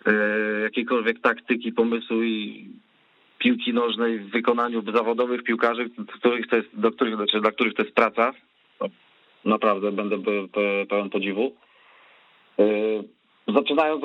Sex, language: male, Polish